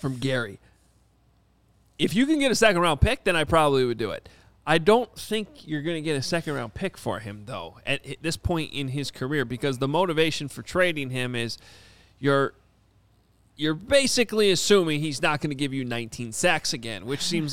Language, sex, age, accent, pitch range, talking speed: English, male, 30-49, American, 110-155 Hz, 190 wpm